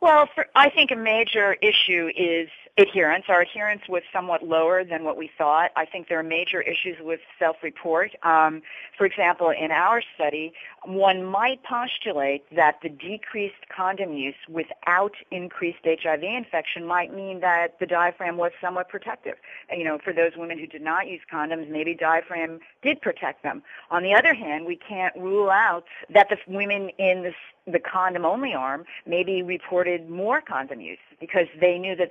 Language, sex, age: English, female, 40-59